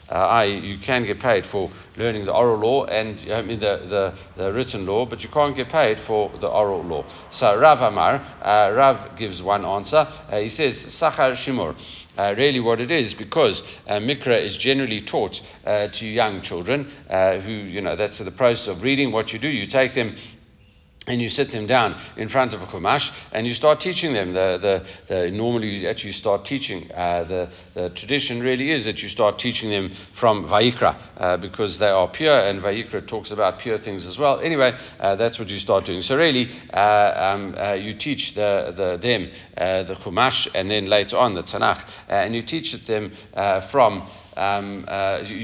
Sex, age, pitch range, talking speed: male, 50-69, 100-125 Hz, 205 wpm